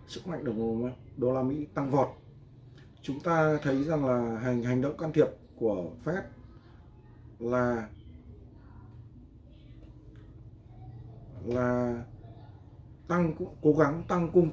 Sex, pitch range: male, 110-130 Hz